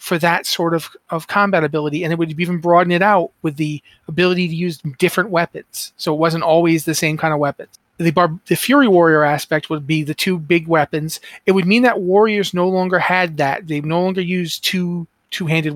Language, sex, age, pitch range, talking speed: English, male, 30-49, 155-190 Hz, 215 wpm